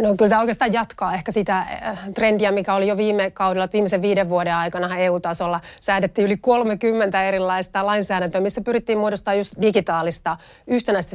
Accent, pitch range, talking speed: native, 180-205 Hz, 155 wpm